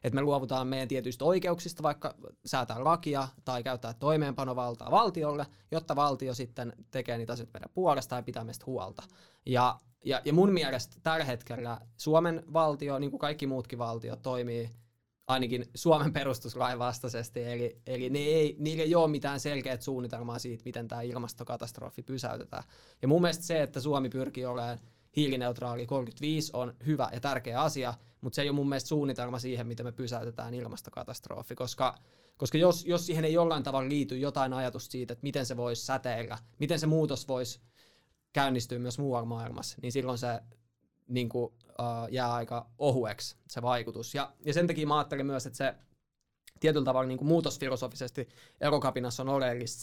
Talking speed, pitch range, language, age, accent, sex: 165 wpm, 120-145 Hz, Finnish, 20-39, native, male